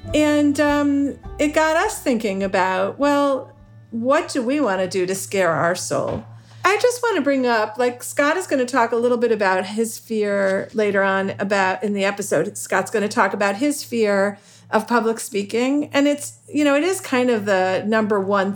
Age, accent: 50-69, American